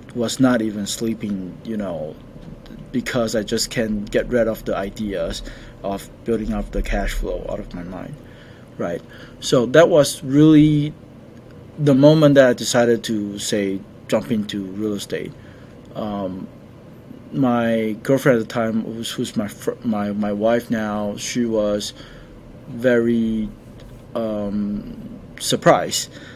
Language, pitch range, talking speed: English, 110-130 Hz, 135 wpm